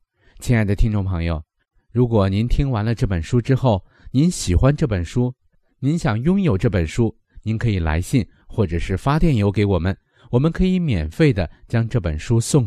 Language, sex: Chinese, male